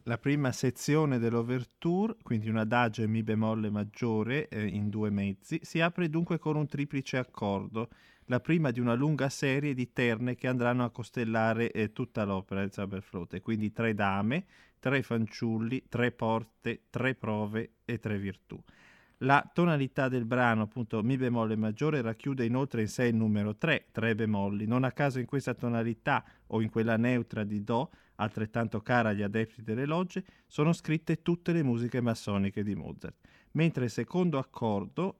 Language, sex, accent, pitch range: Italian, male, native, 110-130 Hz